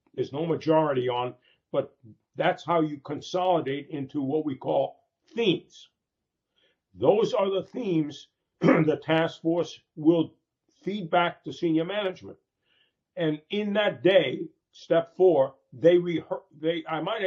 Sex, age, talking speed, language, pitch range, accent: male, 50-69, 130 wpm, English, 140-180 Hz, American